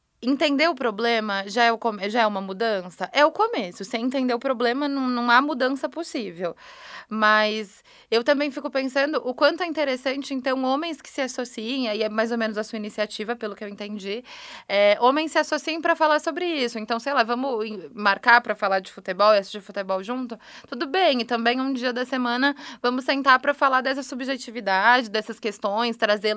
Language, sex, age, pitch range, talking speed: Portuguese, female, 20-39, 215-275 Hz, 200 wpm